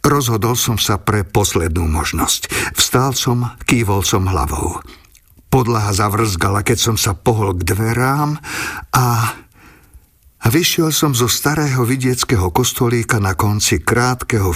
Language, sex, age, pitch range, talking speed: Slovak, male, 50-69, 100-125 Hz, 120 wpm